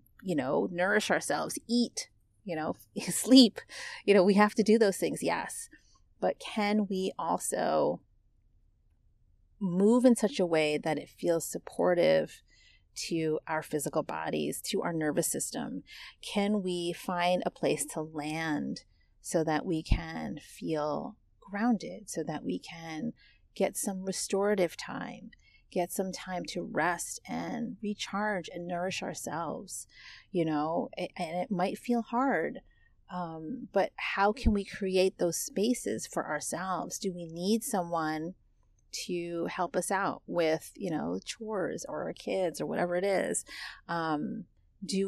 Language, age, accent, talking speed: English, 30-49, American, 140 wpm